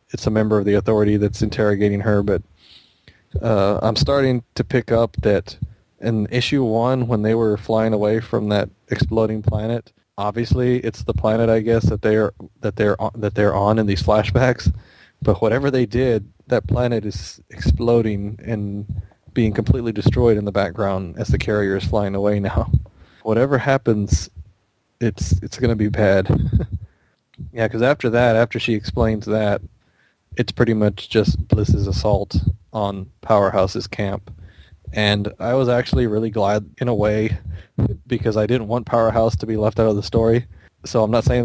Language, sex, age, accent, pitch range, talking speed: English, male, 20-39, American, 100-115 Hz, 170 wpm